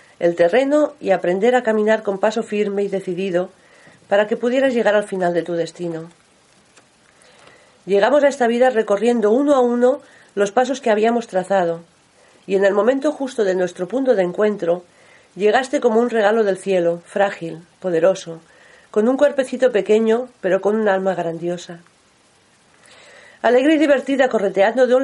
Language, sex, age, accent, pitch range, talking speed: Spanish, female, 40-59, Spanish, 185-245 Hz, 160 wpm